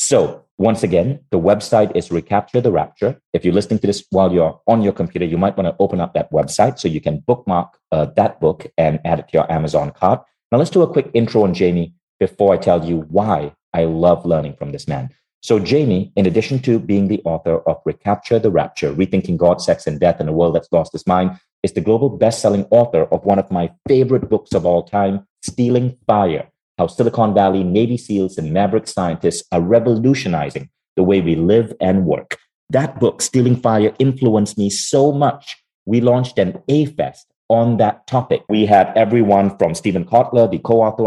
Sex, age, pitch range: male, 30-49, 90-120 Hz